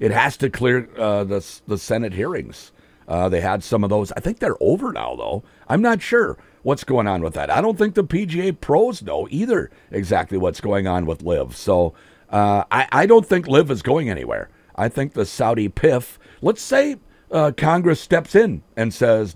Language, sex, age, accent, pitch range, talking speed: English, male, 50-69, American, 100-135 Hz, 205 wpm